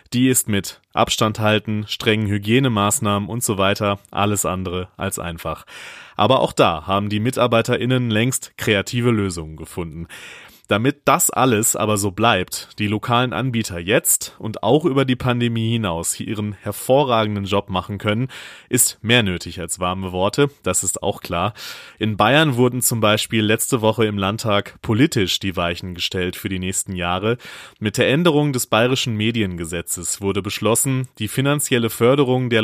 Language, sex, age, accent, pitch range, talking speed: German, male, 30-49, German, 95-125 Hz, 155 wpm